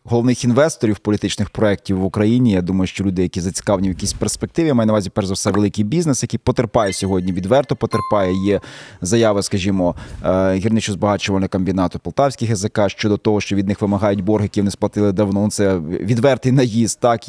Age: 30-49